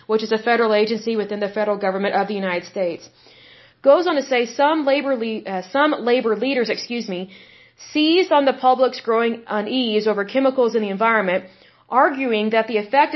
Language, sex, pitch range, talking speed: Hindi, female, 215-260 Hz, 185 wpm